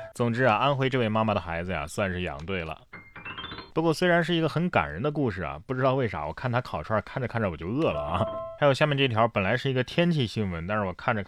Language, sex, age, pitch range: Chinese, male, 20-39, 100-140 Hz